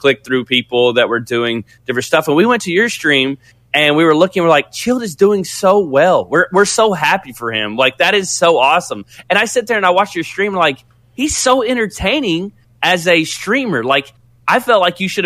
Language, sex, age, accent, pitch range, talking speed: English, male, 20-39, American, 130-170 Hz, 230 wpm